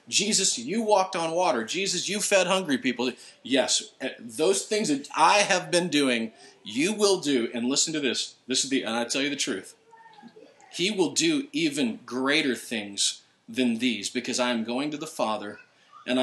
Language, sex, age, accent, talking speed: English, male, 40-59, American, 185 wpm